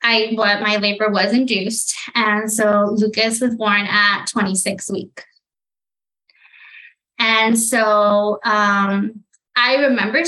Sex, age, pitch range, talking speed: female, 20-39, 205-250 Hz, 110 wpm